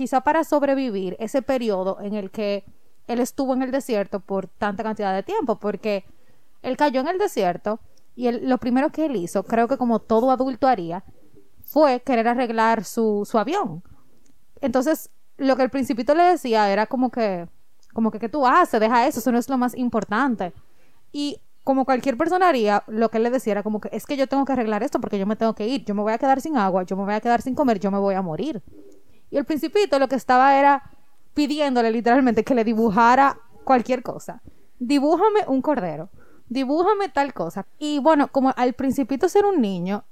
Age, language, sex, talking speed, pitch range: 20-39, Spanish, female, 210 wpm, 210-270 Hz